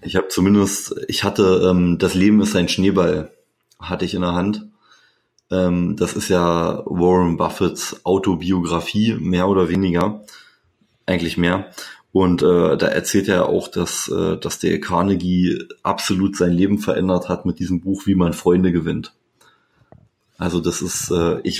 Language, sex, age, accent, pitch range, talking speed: German, male, 30-49, German, 90-95 Hz, 155 wpm